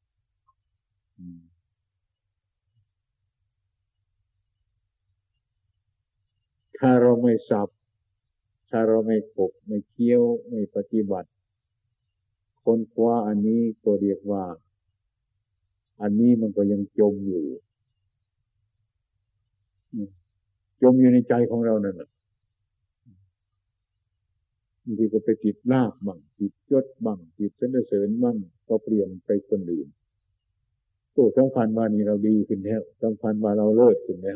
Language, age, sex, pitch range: Thai, 50-69, male, 95-115 Hz